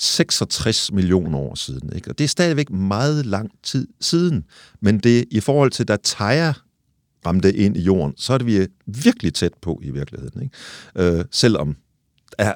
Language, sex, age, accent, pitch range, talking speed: Danish, male, 50-69, native, 90-130 Hz, 185 wpm